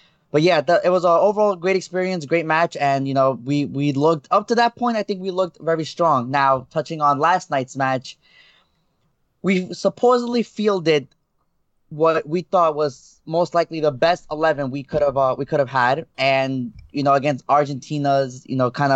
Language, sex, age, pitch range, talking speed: English, male, 20-39, 135-170 Hz, 195 wpm